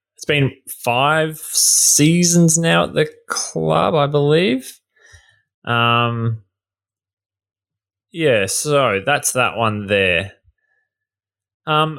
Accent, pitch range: Australian, 105-140 Hz